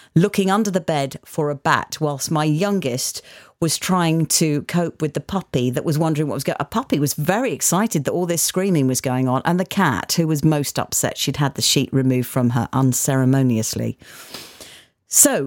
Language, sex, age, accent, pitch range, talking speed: English, female, 40-59, British, 135-185 Hz, 200 wpm